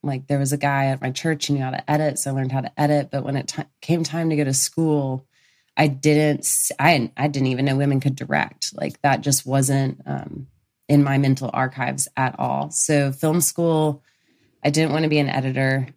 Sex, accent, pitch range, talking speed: female, American, 135-150 Hz, 220 wpm